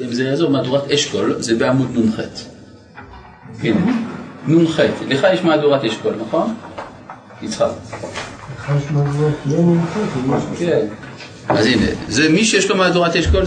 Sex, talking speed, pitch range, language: male, 125 wpm, 130-170 Hz, Hebrew